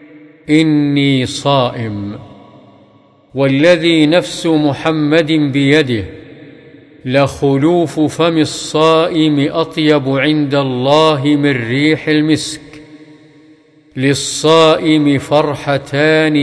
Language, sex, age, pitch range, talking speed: Arabic, male, 50-69, 135-155 Hz, 60 wpm